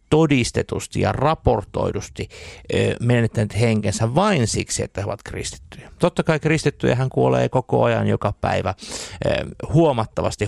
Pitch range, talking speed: 105-145 Hz, 115 wpm